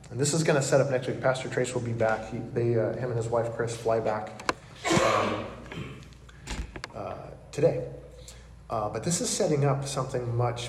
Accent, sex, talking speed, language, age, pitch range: American, male, 195 wpm, English, 20-39, 115-140 Hz